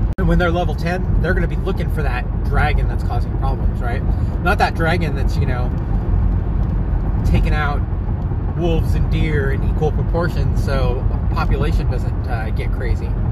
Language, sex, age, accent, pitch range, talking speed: English, male, 30-49, American, 90-100 Hz, 165 wpm